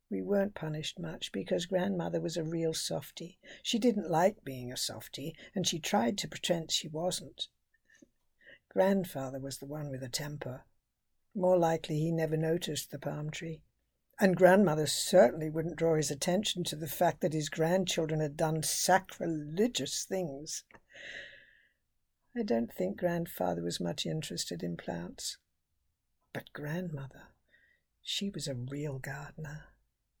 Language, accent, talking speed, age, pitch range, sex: English, British, 140 wpm, 60-79, 155-200 Hz, female